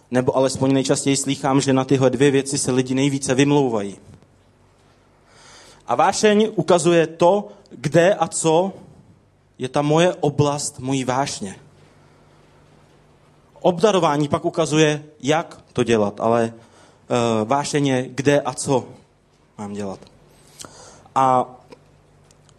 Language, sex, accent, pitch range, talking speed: Czech, male, native, 135-165 Hz, 110 wpm